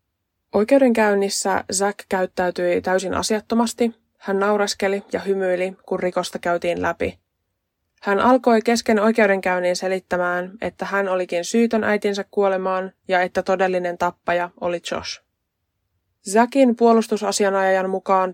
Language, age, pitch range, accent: Finnish, 20-39, 170-205 Hz, native